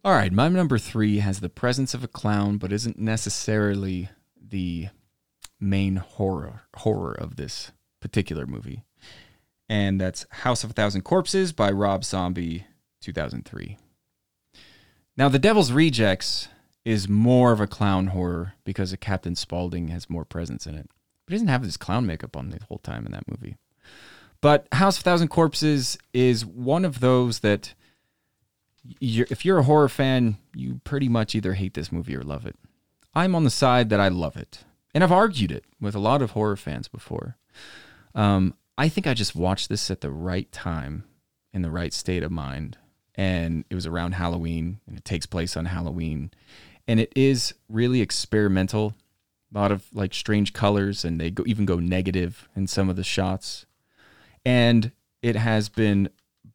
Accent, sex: American, male